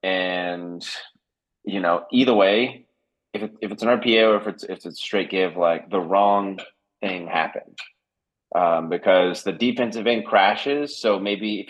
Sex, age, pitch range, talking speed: male, 30-49, 90-105 Hz, 170 wpm